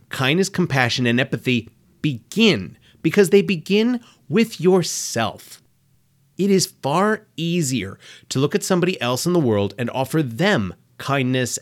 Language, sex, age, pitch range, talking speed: English, male, 30-49, 115-160 Hz, 135 wpm